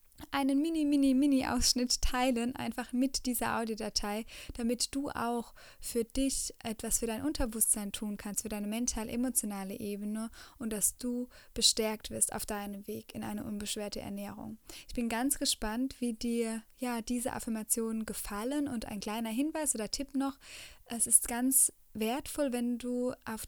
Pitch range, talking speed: 220-260 Hz, 150 wpm